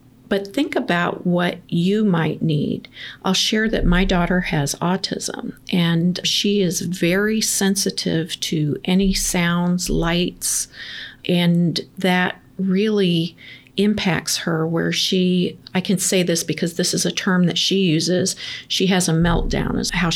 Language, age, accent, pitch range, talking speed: English, 50-69, American, 165-190 Hz, 145 wpm